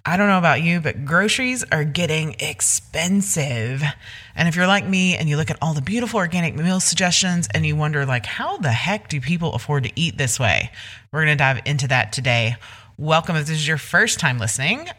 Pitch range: 130-170 Hz